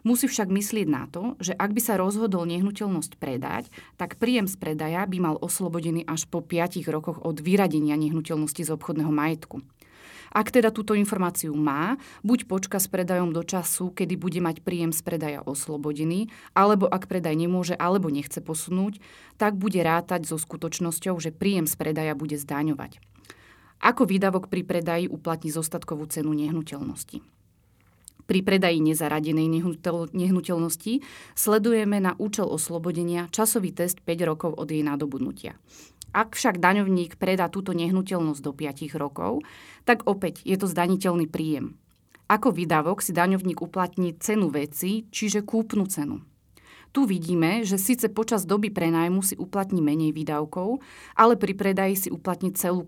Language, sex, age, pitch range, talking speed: Slovak, female, 30-49, 160-195 Hz, 150 wpm